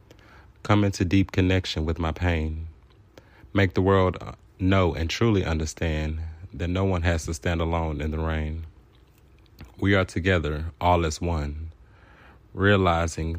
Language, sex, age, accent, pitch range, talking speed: English, male, 30-49, American, 80-95 Hz, 140 wpm